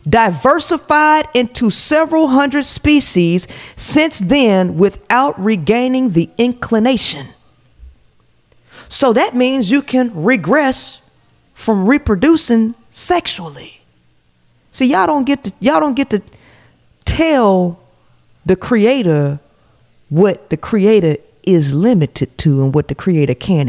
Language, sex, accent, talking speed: English, female, American, 110 wpm